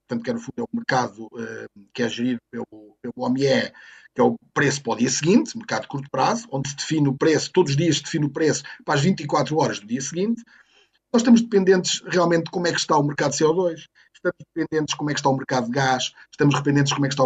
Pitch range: 135-180 Hz